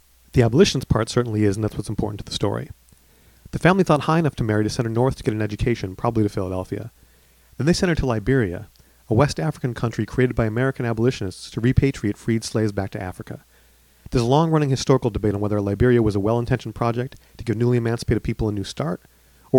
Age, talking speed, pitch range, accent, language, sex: 40-59, 220 wpm, 100-130 Hz, American, English, male